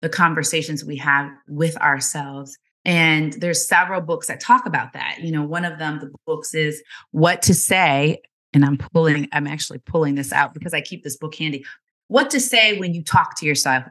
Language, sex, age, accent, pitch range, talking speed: English, female, 30-49, American, 150-205 Hz, 205 wpm